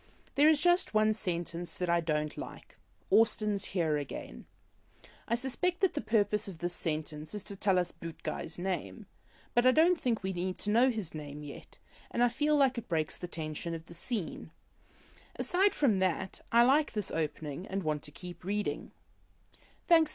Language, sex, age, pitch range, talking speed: English, female, 30-49, 155-240 Hz, 185 wpm